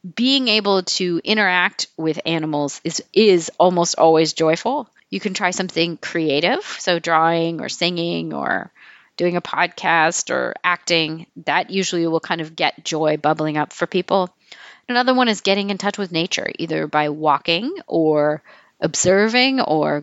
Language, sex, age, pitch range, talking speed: English, female, 40-59, 160-210 Hz, 155 wpm